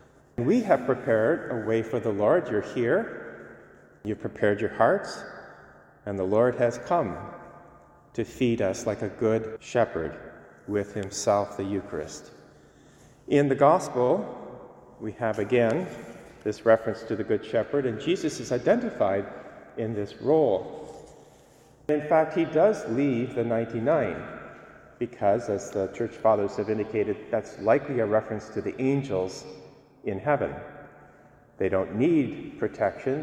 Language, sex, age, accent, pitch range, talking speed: English, male, 40-59, American, 100-130 Hz, 135 wpm